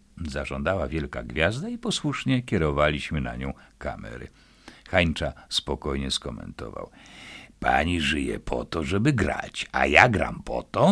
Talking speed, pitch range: 125 wpm, 75-95 Hz